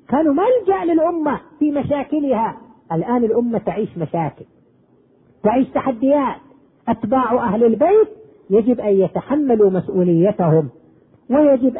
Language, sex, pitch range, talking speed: Arabic, female, 200-270 Hz, 95 wpm